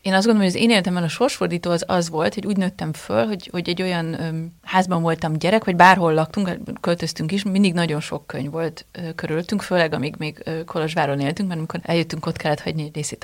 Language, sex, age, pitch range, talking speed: Hungarian, female, 30-49, 160-200 Hz, 215 wpm